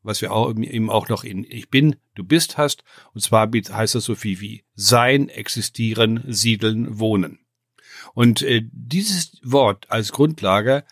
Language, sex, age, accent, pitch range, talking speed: German, male, 60-79, German, 115-145 Hz, 155 wpm